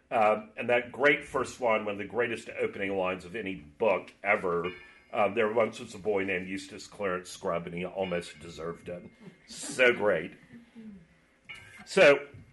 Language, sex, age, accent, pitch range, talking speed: English, male, 40-59, American, 105-175 Hz, 165 wpm